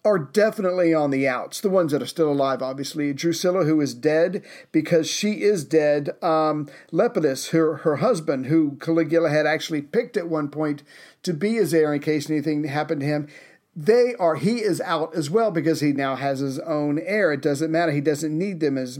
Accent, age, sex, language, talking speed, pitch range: American, 50-69, male, English, 205 wpm, 150-180 Hz